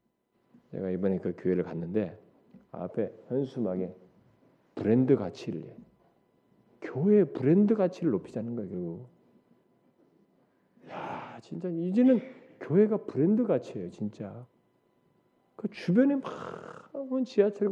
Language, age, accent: Korean, 40-59, native